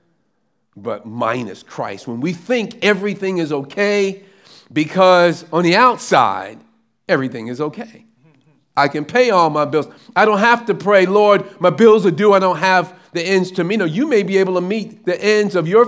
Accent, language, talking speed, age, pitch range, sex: American, English, 190 wpm, 40-59, 160-210 Hz, male